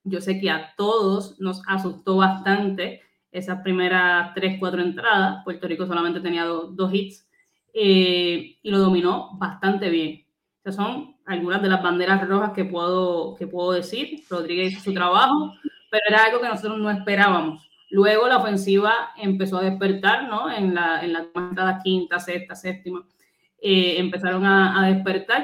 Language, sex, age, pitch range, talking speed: Spanish, female, 20-39, 180-200 Hz, 160 wpm